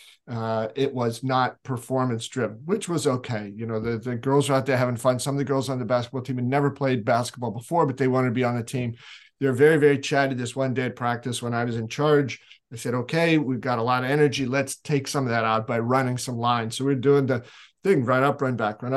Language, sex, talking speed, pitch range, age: English, male, 265 wpm, 125-155 Hz, 50-69